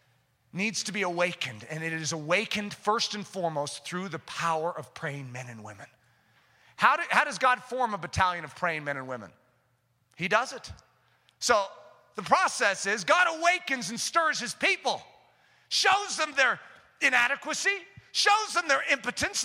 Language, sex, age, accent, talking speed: English, male, 40-59, American, 160 wpm